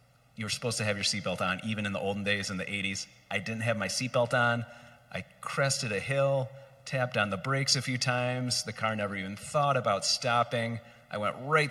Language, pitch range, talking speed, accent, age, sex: English, 100-130 Hz, 220 wpm, American, 30-49, male